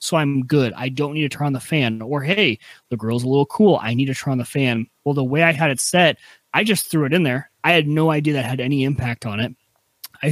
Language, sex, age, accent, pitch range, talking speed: English, male, 30-49, American, 125-155 Hz, 285 wpm